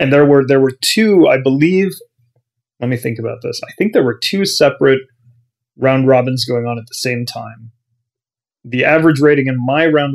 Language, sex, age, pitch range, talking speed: English, male, 30-49, 120-135 Hz, 195 wpm